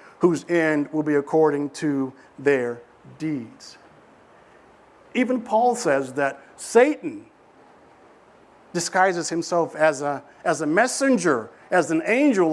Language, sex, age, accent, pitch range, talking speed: English, male, 50-69, American, 160-230 Hz, 105 wpm